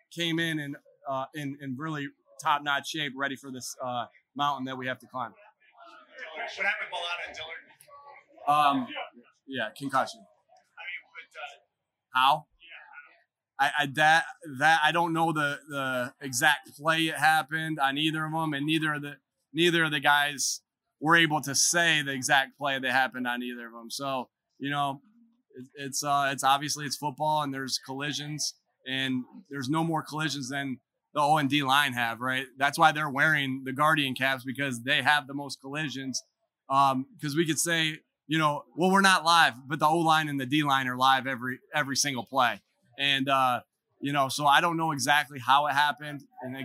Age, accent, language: 20-39, American, English